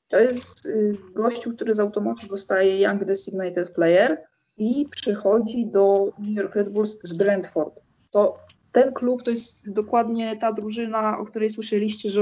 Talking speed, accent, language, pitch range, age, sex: 150 wpm, native, Polish, 195-220 Hz, 20-39, female